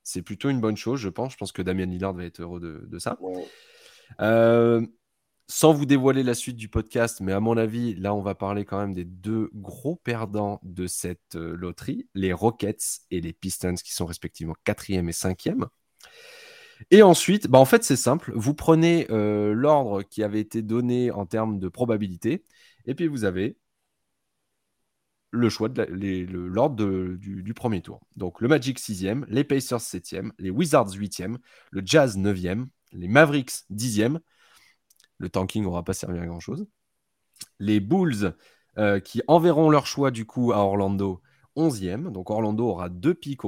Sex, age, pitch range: male, 20-39, 95-125 Hz